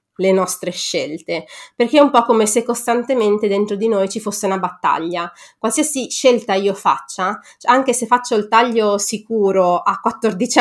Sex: female